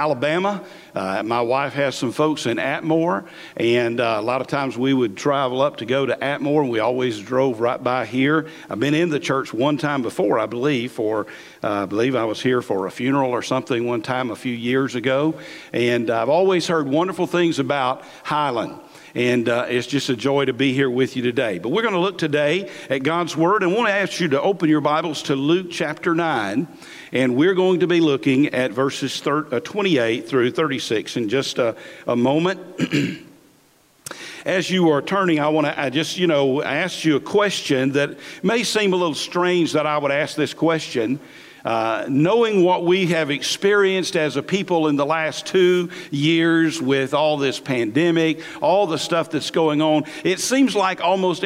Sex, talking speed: male, 200 wpm